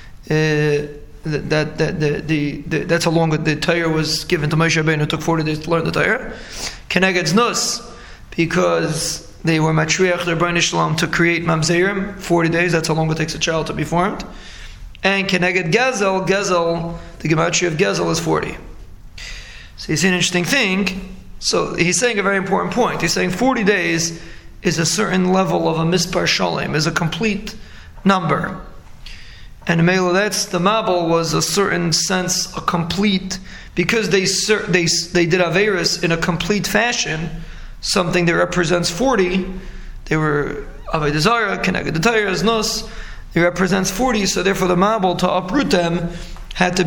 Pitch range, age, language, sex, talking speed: 165-190 Hz, 30-49, English, male, 160 wpm